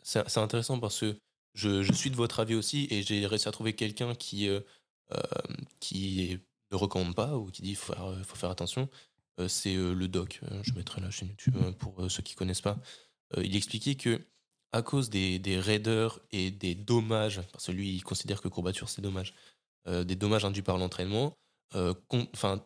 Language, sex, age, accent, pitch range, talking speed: French, male, 20-39, French, 95-115 Hz, 185 wpm